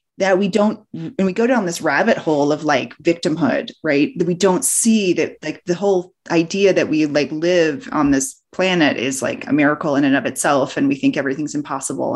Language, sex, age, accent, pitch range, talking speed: English, female, 30-49, American, 165-240 Hz, 210 wpm